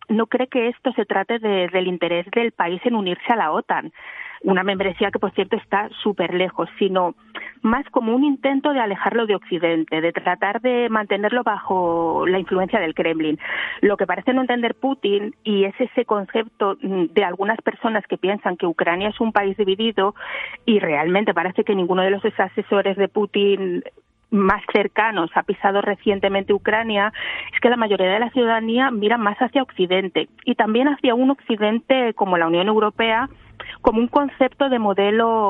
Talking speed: 175 wpm